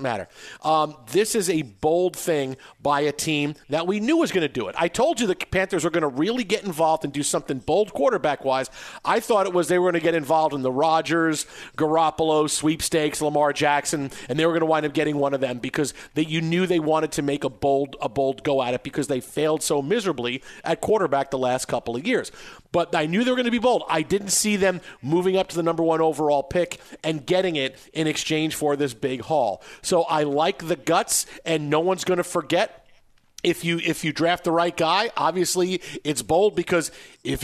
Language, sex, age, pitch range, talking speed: English, male, 40-59, 145-180 Hz, 230 wpm